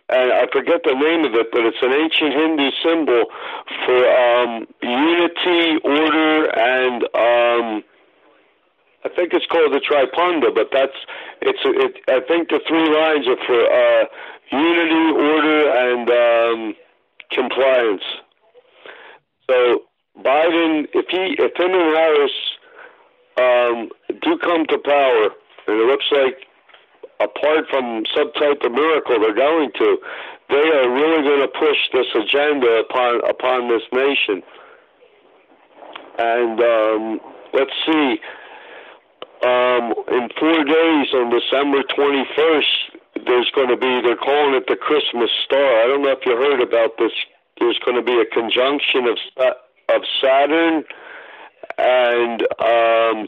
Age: 60-79